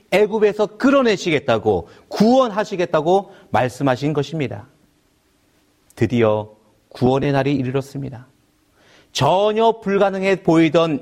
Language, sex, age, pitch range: Korean, male, 40-59, 125-170 Hz